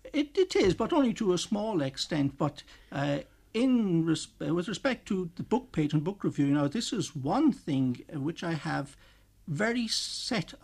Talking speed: 185 wpm